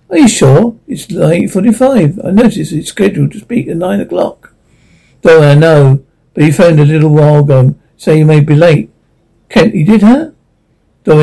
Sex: male